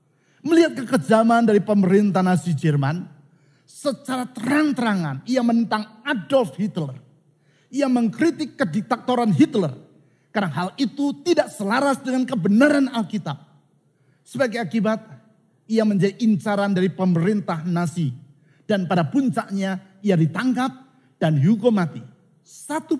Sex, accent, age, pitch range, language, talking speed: male, native, 50-69, 170-255 Hz, Indonesian, 105 wpm